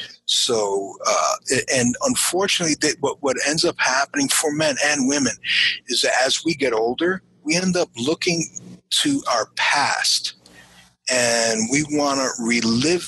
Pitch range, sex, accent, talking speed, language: 115-170 Hz, male, American, 140 wpm, English